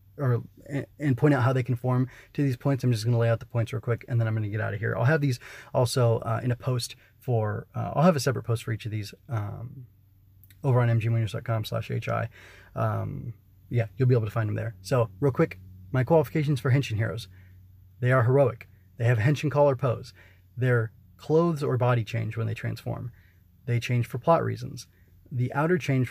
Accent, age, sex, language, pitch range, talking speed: American, 30-49, male, English, 110-140 Hz, 215 wpm